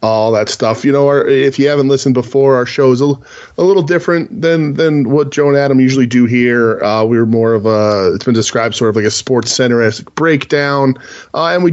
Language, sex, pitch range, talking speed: English, male, 110-130 Hz, 230 wpm